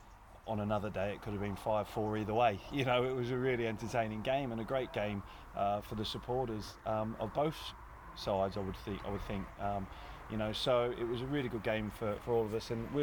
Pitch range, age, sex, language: 100-115 Hz, 20-39, male, English